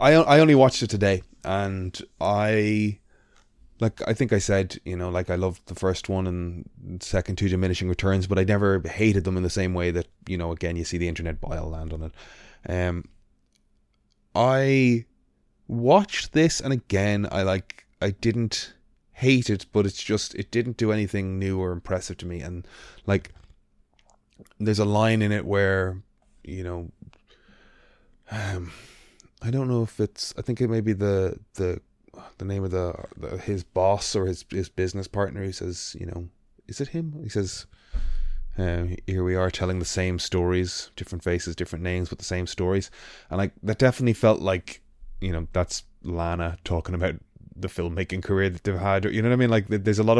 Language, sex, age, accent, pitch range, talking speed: English, male, 20-39, Irish, 90-110 Hz, 190 wpm